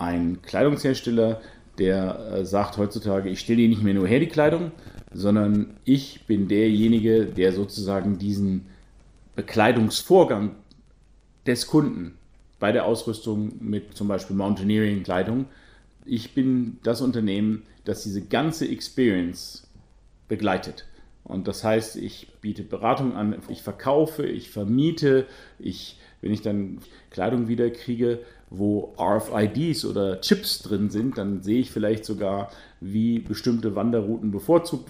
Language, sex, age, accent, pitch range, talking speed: German, male, 40-59, German, 100-120 Hz, 125 wpm